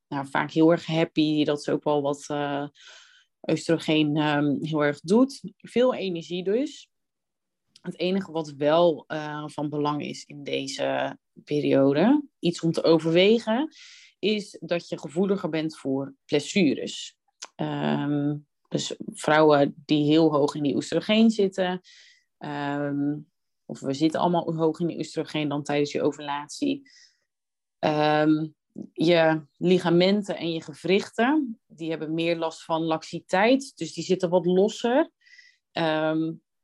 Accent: Dutch